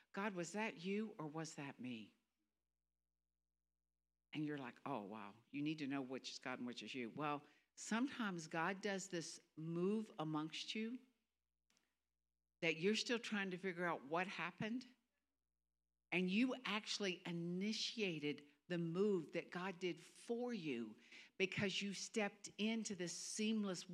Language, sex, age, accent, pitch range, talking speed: English, female, 60-79, American, 145-200 Hz, 145 wpm